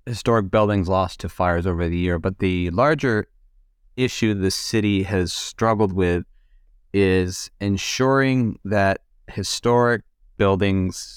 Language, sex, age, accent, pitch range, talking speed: English, male, 30-49, American, 85-105 Hz, 120 wpm